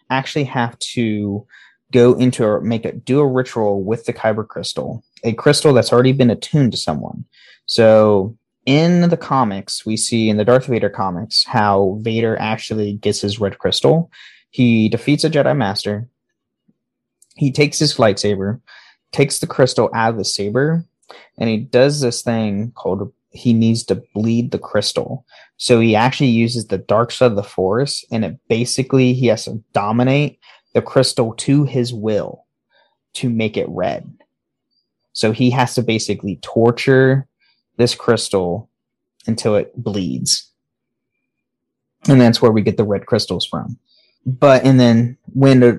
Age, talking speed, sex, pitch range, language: 20-39, 155 wpm, male, 110-130 Hz, English